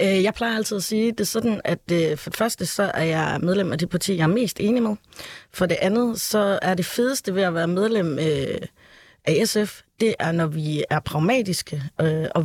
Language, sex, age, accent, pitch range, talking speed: Danish, female, 30-49, native, 165-195 Hz, 215 wpm